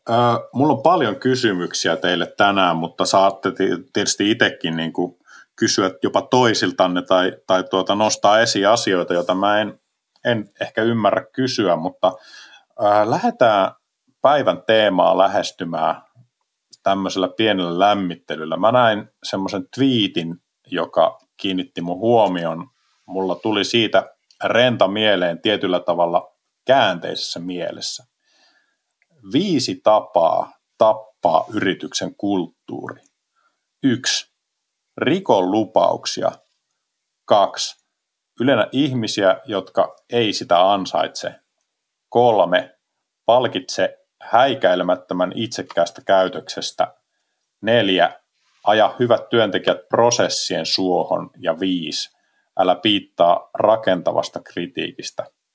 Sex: male